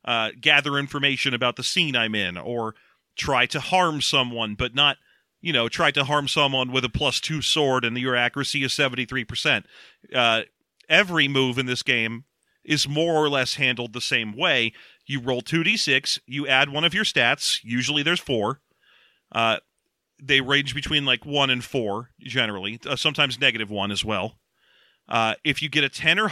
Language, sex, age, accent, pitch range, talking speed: English, male, 40-59, American, 125-150 Hz, 190 wpm